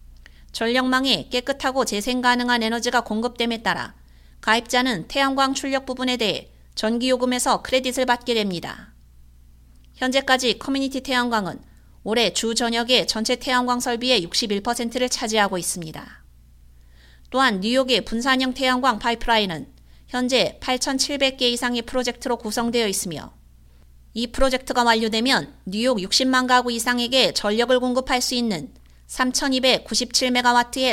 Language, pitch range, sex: Korean, 205-255 Hz, female